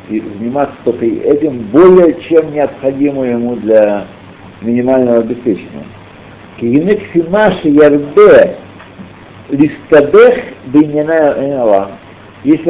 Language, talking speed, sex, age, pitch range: Russian, 55 wpm, male, 60-79, 110-175 Hz